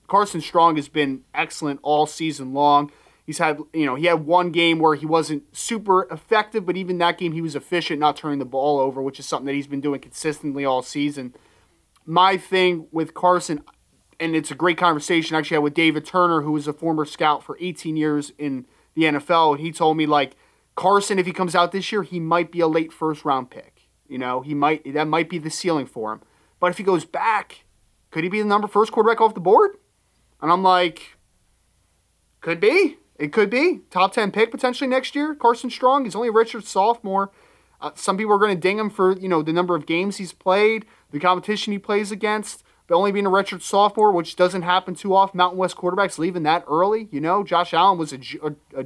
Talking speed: 225 wpm